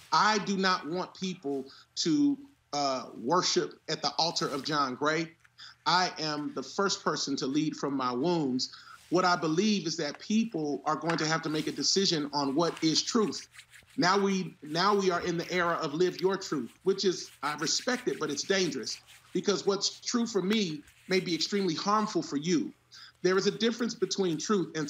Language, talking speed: English, 190 wpm